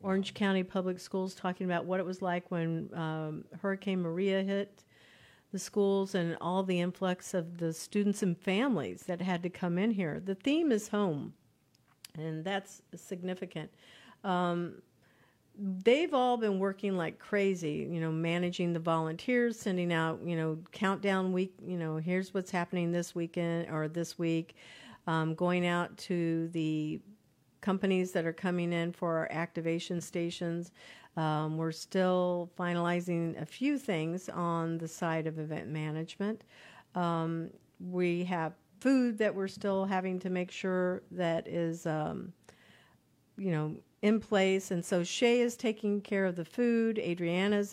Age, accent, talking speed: 50-69, American, 155 wpm